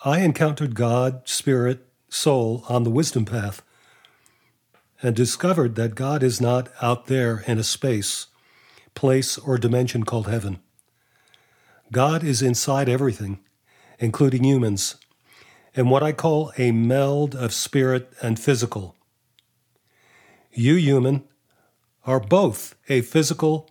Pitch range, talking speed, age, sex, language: 120-145 Hz, 120 wpm, 40-59, male, English